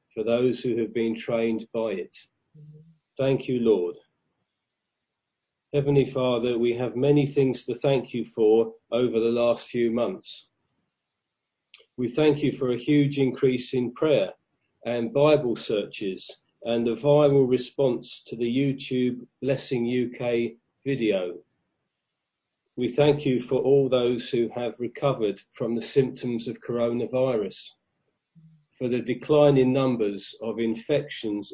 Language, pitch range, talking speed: English, 115-135 Hz, 130 wpm